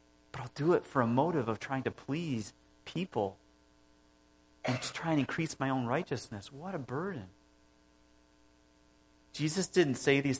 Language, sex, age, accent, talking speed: English, male, 40-59, American, 155 wpm